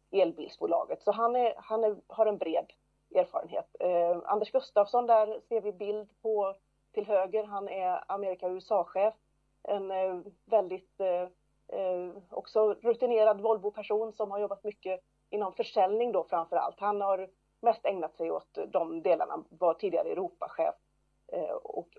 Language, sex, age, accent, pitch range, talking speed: English, female, 30-49, Swedish, 175-225 Hz, 145 wpm